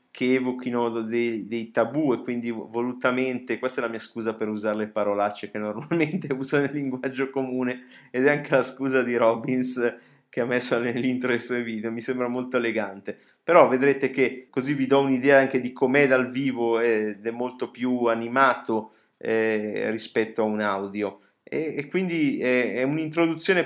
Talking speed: 165 wpm